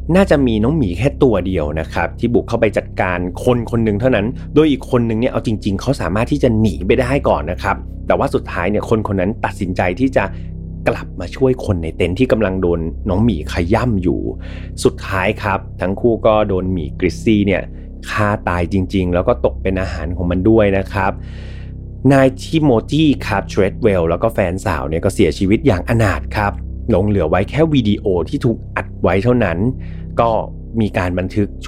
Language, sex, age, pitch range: Thai, male, 30-49, 90-120 Hz